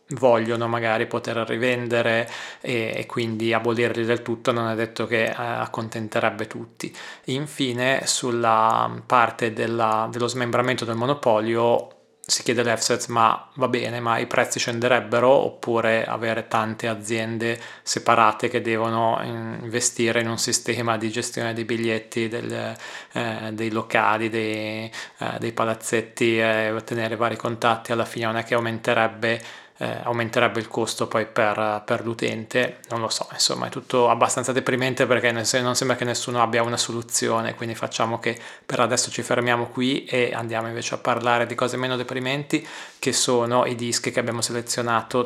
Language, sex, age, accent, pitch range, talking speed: Italian, male, 20-39, native, 115-125 Hz, 155 wpm